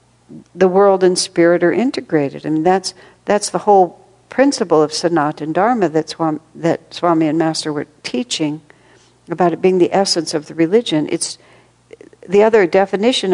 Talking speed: 160 wpm